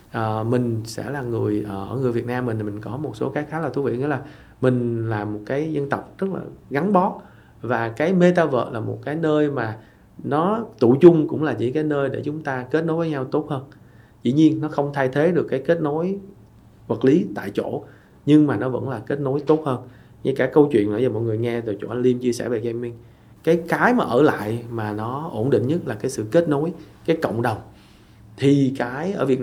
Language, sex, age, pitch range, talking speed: Vietnamese, male, 20-39, 110-140 Hz, 240 wpm